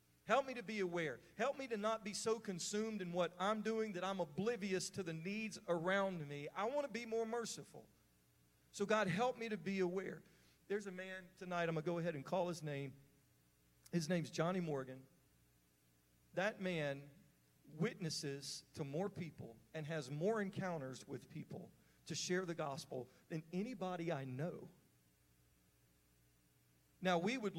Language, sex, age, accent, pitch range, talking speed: English, male, 40-59, American, 135-185 Hz, 170 wpm